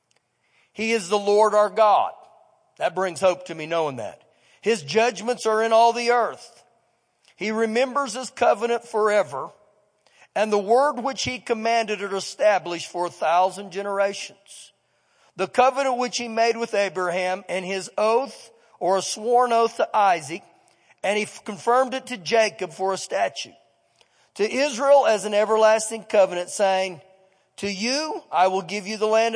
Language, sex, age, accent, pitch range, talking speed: English, male, 50-69, American, 200-250 Hz, 155 wpm